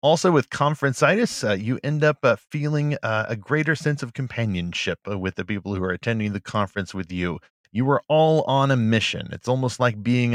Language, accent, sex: English, American, male